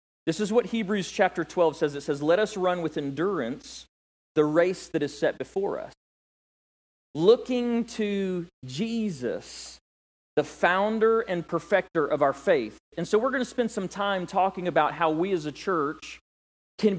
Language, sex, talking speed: English, male, 165 wpm